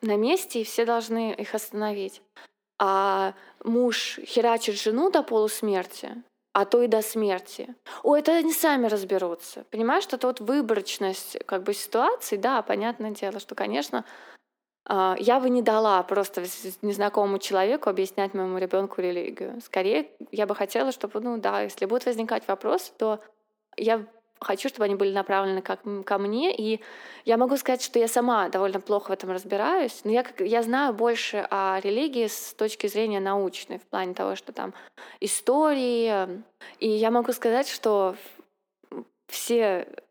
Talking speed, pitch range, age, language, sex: 155 wpm, 195-240 Hz, 20-39, Russian, female